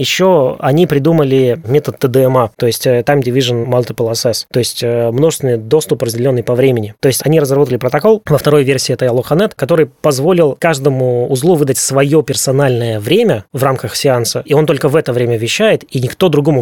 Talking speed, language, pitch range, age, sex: 175 wpm, Russian, 120-150 Hz, 20-39, male